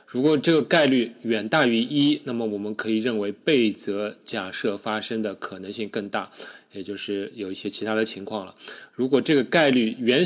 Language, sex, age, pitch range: Chinese, male, 20-39, 100-125 Hz